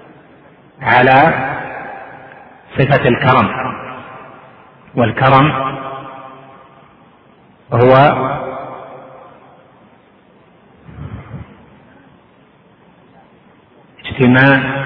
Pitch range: 115-130 Hz